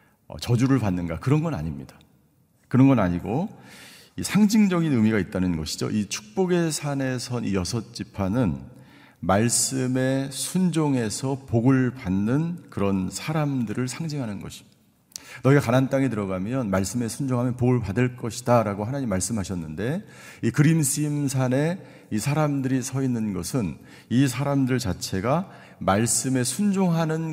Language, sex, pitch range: Korean, male, 105-140 Hz